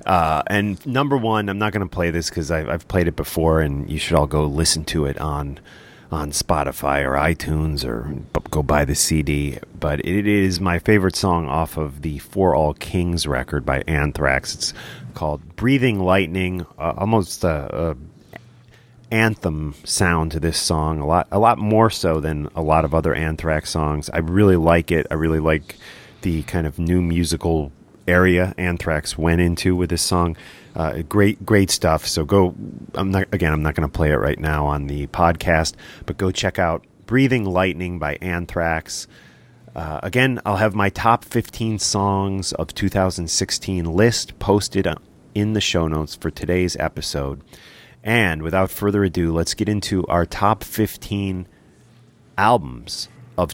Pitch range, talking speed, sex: 80-100 Hz, 170 wpm, male